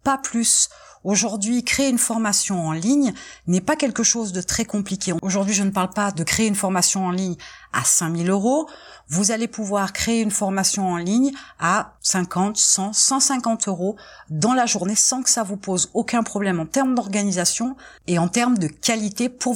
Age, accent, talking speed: 30-49, French, 185 wpm